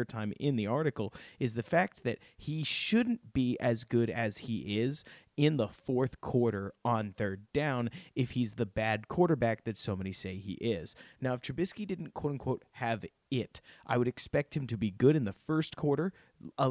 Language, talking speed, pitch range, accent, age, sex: English, 195 wpm, 105-135 Hz, American, 30-49, male